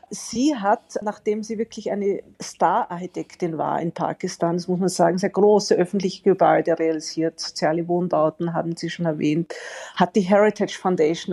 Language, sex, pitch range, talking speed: German, female, 175-210 Hz, 155 wpm